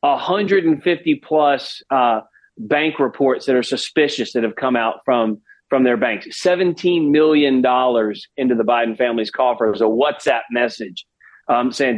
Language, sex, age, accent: English, male, 40-59, American